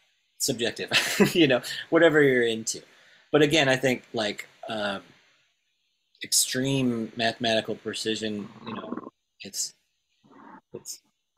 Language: English